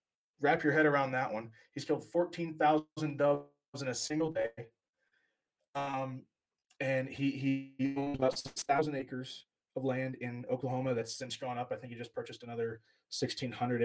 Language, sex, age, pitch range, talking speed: English, male, 20-39, 110-135 Hz, 160 wpm